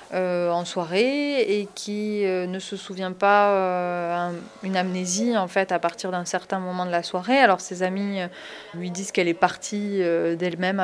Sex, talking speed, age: female, 195 wpm, 20-39